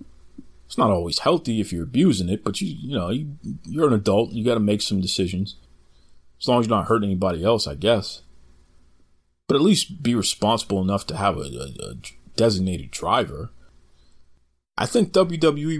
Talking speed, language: 180 wpm, English